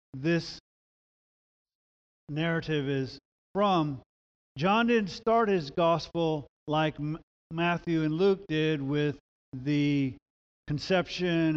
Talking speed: 90 wpm